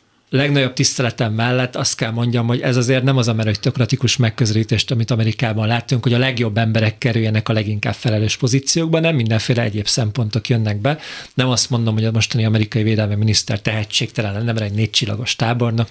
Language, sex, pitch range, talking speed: Hungarian, male, 115-135 Hz, 175 wpm